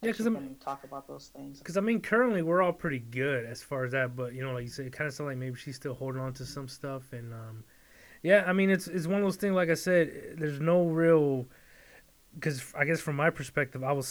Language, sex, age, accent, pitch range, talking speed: English, male, 20-39, American, 125-160 Hz, 270 wpm